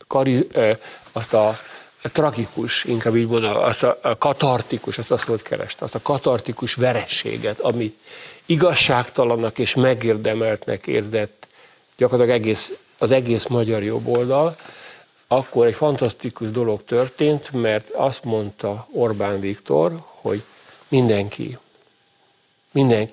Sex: male